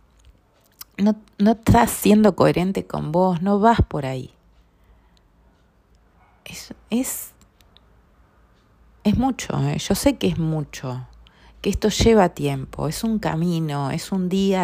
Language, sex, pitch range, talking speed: Spanish, female, 125-195 Hz, 125 wpm